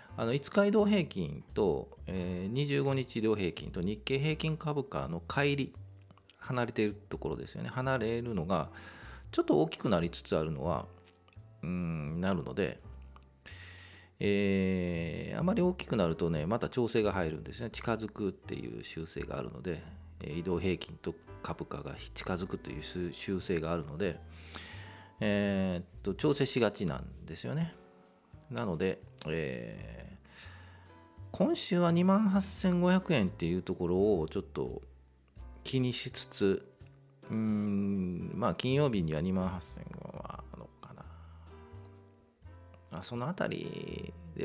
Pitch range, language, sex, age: 85-130 Hz, Japanese, male, 40-59